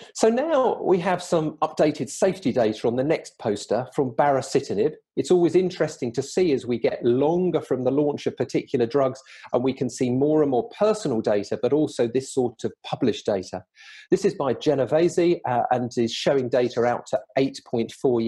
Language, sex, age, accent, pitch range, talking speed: English, male, 40-59, British, 120-175 Hz, 185 wpm